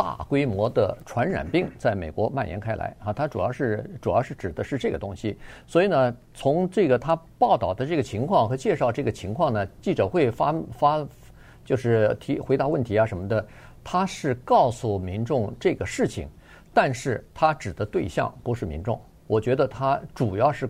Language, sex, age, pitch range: Chinese, male, 50-69, 105-150 Hz